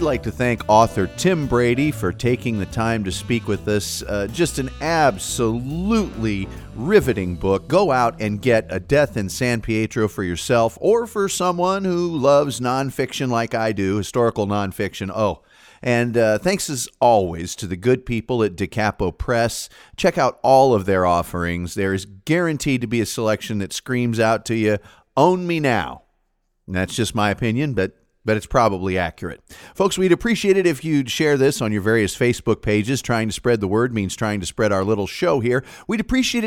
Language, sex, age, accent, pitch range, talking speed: English, male, 40-59, American, 105-145 Hz, 190 wpm